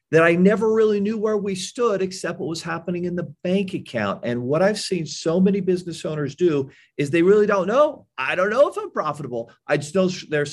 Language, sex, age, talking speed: English, male, 40-59, 230 wpm